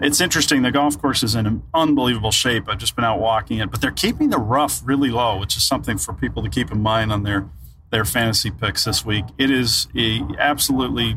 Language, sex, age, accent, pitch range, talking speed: English, male, 40-59, American, 110-135 Hz, 230 wpm